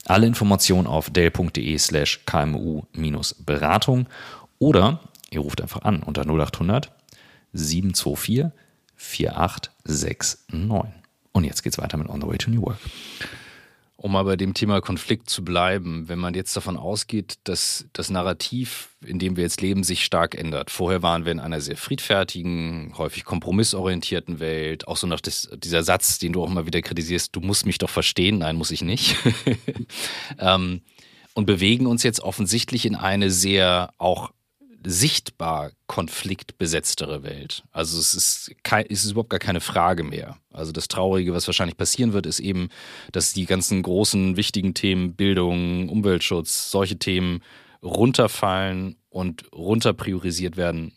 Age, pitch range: 30-49, 85-105 Hz